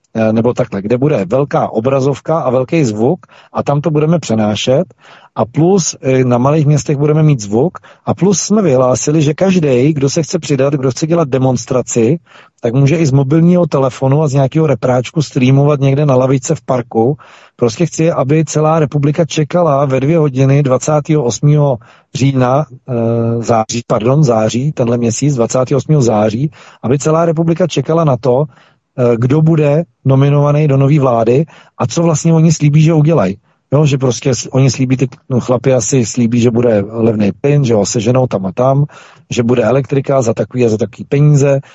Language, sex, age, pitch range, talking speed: Czech, male, 40-59, 120-150 Hz, 170 wpm